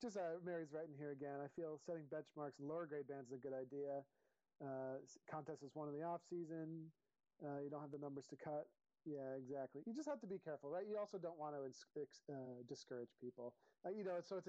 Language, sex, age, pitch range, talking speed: English, male, 40-59, 145-180 Hz, 240 wpm